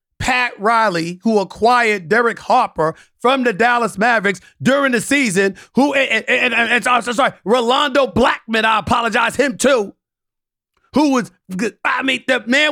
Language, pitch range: English, 185-240 Hz